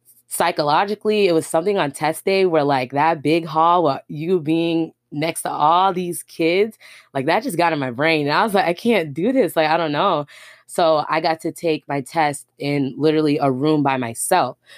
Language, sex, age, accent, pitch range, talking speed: English, female, 20-39, American, 135-165 Hz, 205 wpm